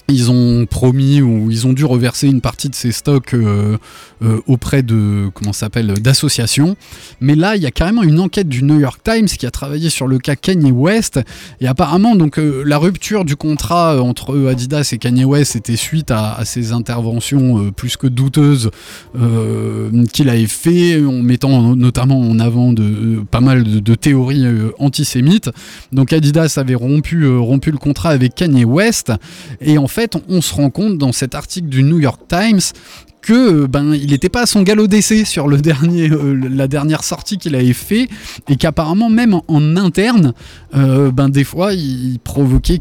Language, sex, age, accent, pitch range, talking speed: French, male, 20-39, French, 120-160 Hz, 195 wpm